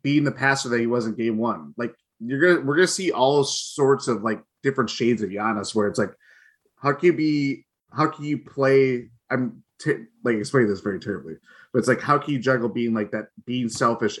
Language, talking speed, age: English, 230 wpm, 20-39